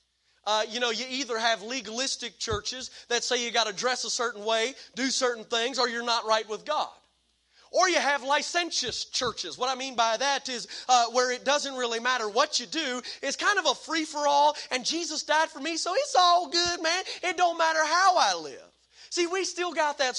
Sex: male